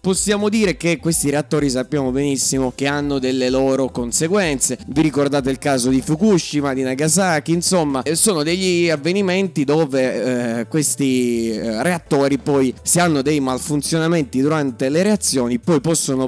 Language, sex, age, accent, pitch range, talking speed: Italian, male, 20-39, native, 130-165 Hz, 140 wpm